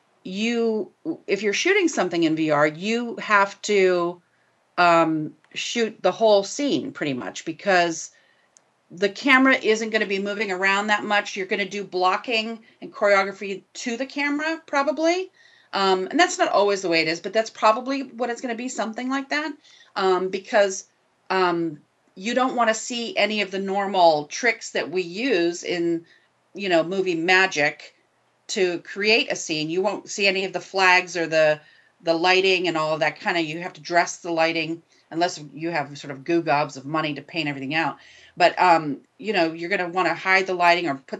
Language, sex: English, female